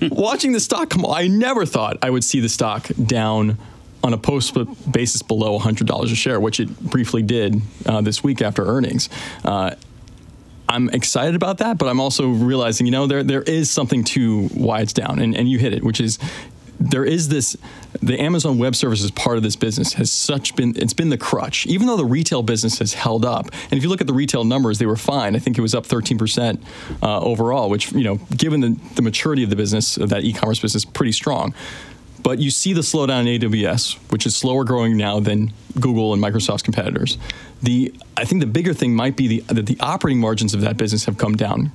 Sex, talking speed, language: male, 220 wpm, English